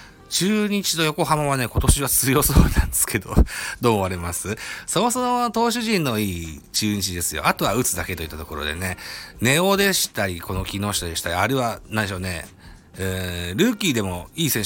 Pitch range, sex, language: 85-115 Hz, male, Japanese